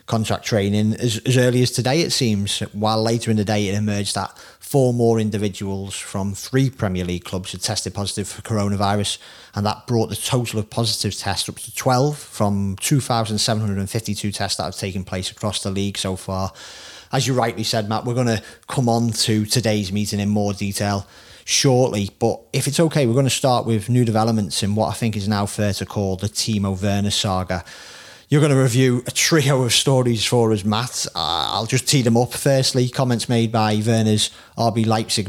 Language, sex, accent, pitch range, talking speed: English, male, British, 100-125 Hz, 200 wpm